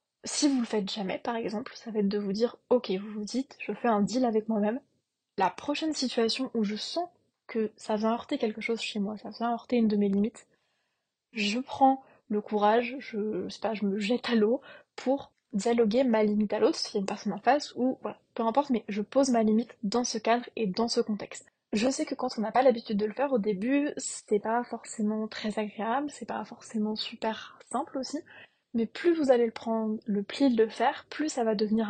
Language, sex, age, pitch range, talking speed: French, female, 20-39, 215-250 Hz, 235 wpm